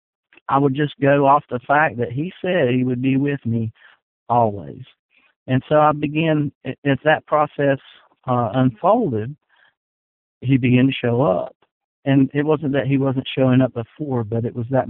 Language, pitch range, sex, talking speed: English, 115-140 Hz, male, 175 wpm